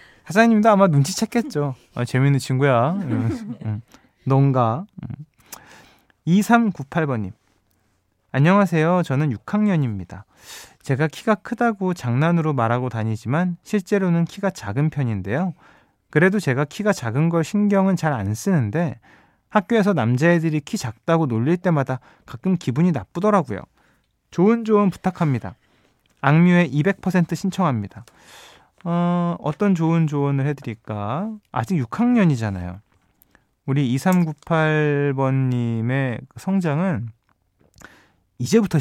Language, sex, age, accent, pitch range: Korean, male, 20-39, native, 115-180 Hz